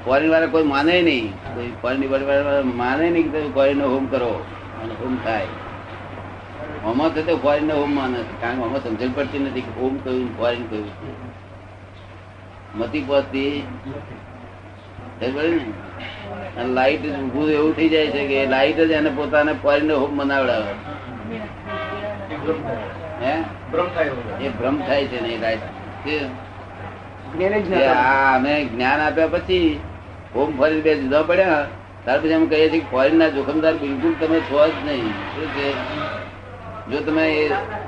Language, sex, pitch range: Gujarati, male, 105-150 Hz